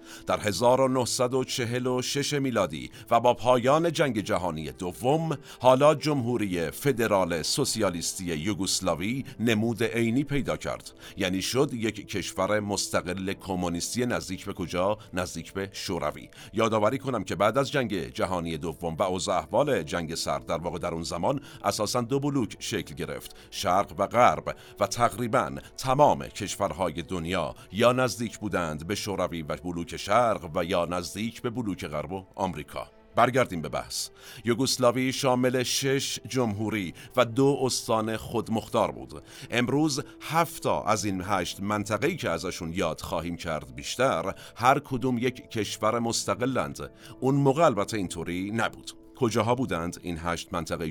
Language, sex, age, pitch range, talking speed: Persian, male, 50-69, 90-125 Hz, 135 wpm